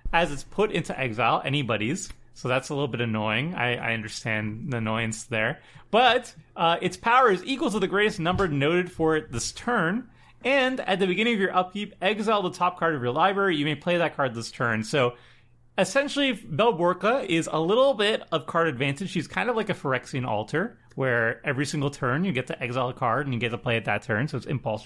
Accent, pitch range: American, 125-185 Hz